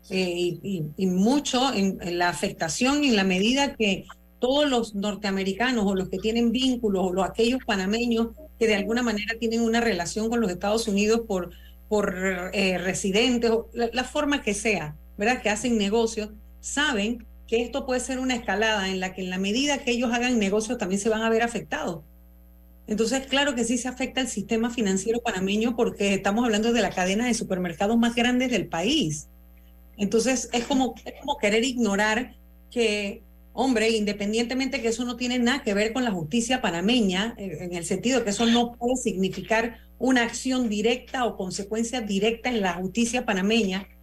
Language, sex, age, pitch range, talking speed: Spanish, female, 40-59, 195-240 Hz, 185 wpm